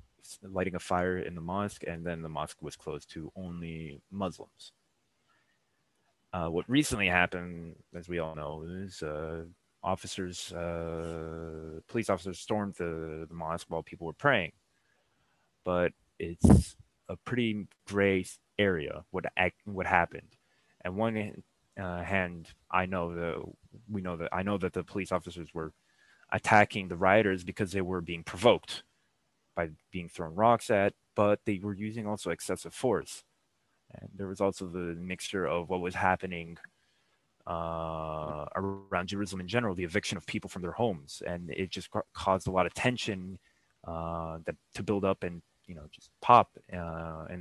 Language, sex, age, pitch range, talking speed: English, male, 20-39, 85-100 Hz, 160 wpm